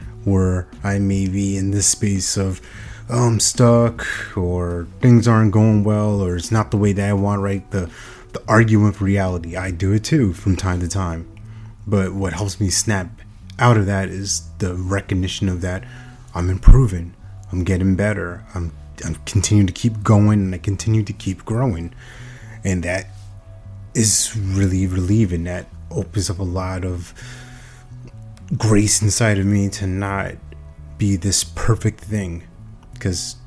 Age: 30-49